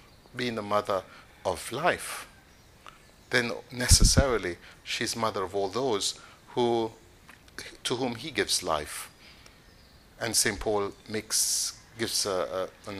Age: 50-69